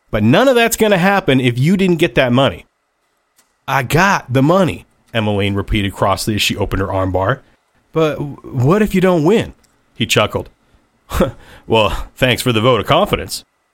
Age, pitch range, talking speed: 40-59, 110-155 Hz, 175 wpm